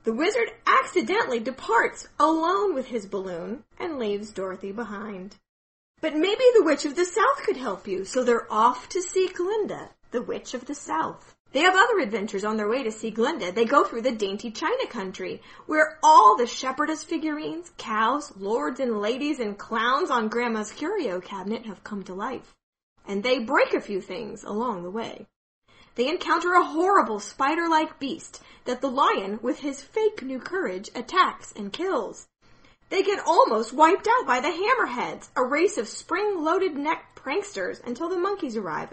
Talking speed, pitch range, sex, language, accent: 175 wpm, 225-370 Hz, female, English, American